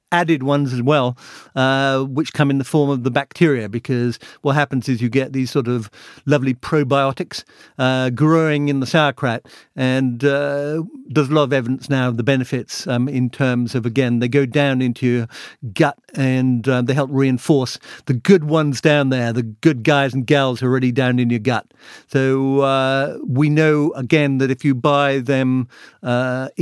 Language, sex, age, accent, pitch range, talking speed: English, male, 50-69, British, 130-150 Hz, 185 wpm